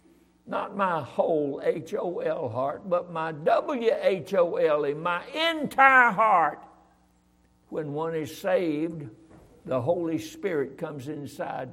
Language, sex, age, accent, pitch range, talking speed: English, male, 60-79, American, 115-170 Hz, 100 wpm